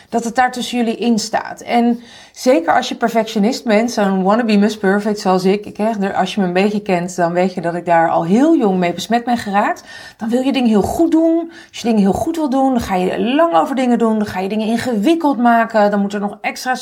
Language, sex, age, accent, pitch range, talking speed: Dutch, female, 40-59, Dutch, 200-250 Hz, 250 wpm